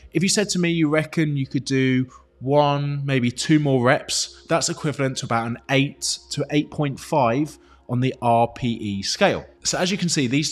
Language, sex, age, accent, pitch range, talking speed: English, male, 20-39, British, 120-155 Hz, 190 wpm